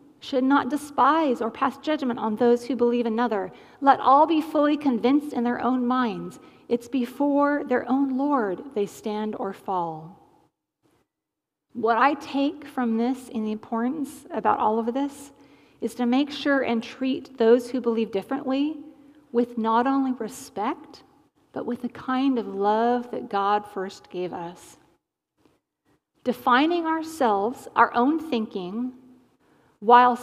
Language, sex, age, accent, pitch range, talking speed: English, female, 40-59, American, 220-270 Hz, 145 wpm